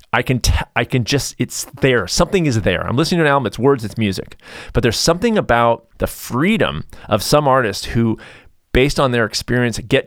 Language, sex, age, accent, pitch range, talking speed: English, male, 30-49, American, 100-130 Hz, 210 wpm